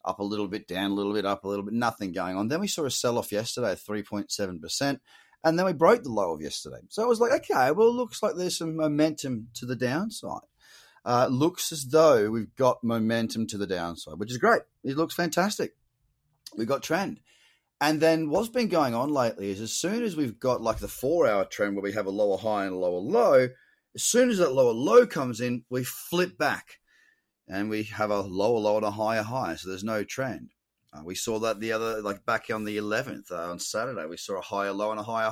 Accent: Australian